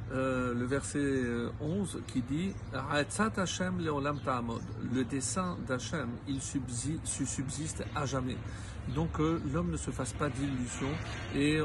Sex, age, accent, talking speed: male, 50-69, French, 120 wpm